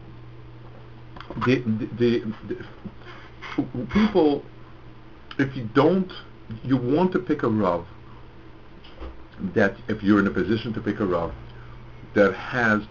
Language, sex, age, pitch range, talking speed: English, male, 50-69, 100-120 Hz, 120 wpm